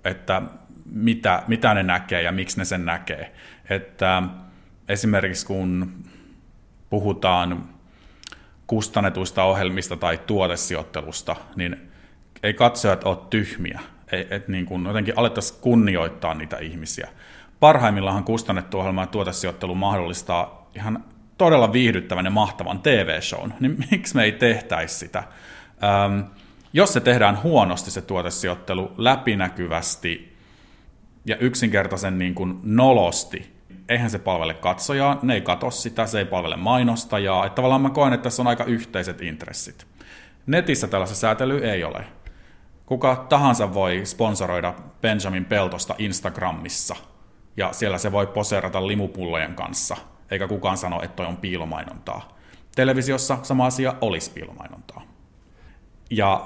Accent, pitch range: native, 90-115 Hz